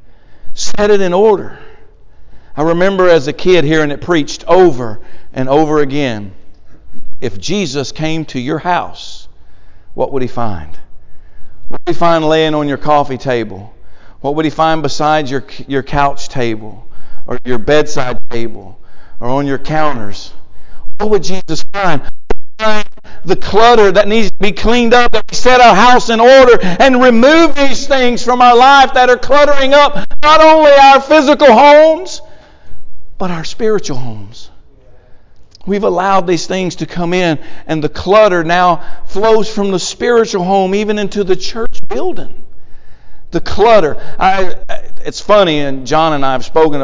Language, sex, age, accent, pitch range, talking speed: English, male, 50-69, American, 135-215 Hz, 160 wpm